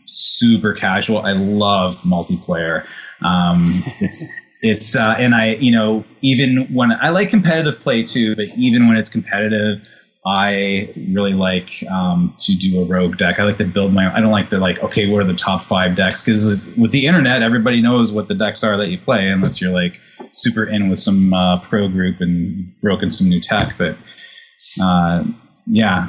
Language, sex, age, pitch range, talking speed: English, male, 20-39, 95-125 Hz, 190 wpm